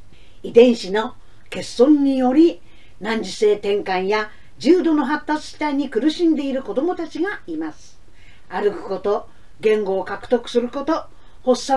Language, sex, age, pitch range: Japanese, female, 40-59, 225-365 Hz